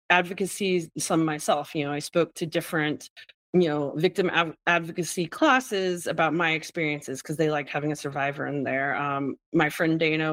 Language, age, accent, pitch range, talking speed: English, 30-49, American, 150-170 Hz, 175 wpm